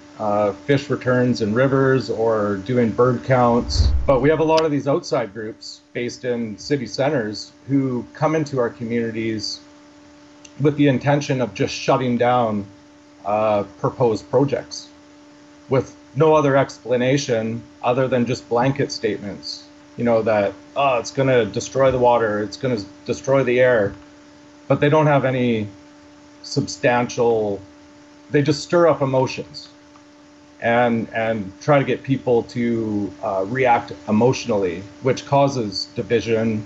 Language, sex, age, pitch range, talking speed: English, male, 30-49, 105-145 Hz, 140 wpm